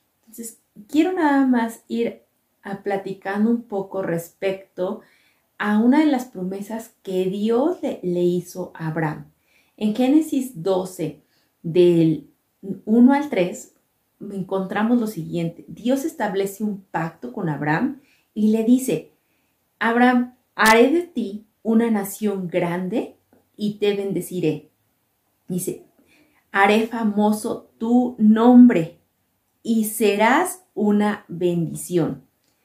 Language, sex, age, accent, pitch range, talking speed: Spanish, female, 30-49, Mexican, 180-235 Hz, 110 wpm